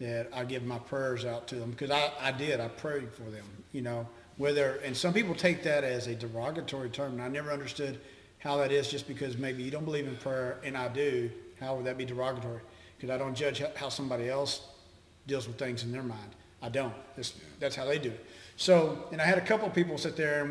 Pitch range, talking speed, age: 120-150 Hz, 245 wpm, 50-69